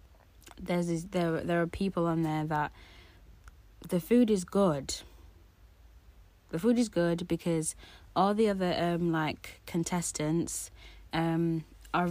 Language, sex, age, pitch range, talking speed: English, female, 30-49, 140-195 Hz, 130 wpm